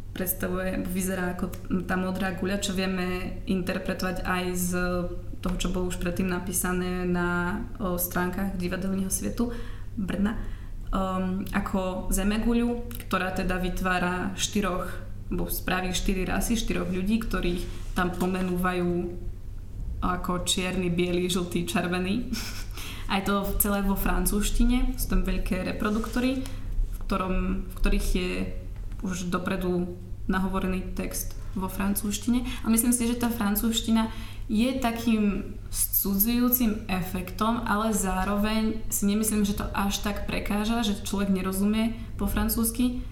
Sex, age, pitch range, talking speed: female, 20-39, 180-205 Hz, 120 wpm